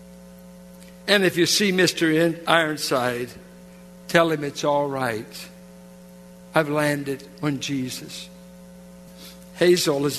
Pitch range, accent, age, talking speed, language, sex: 110-180 Hz, American, 60-79, 100 wpm, English, male